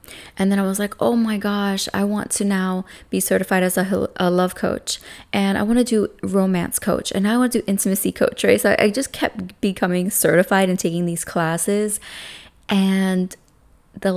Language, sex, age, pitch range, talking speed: English, female, 20-39, 175-200 Hz, 190 wpm